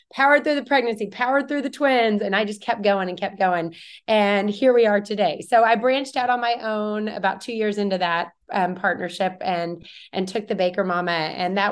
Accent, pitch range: American, 190-230 Hz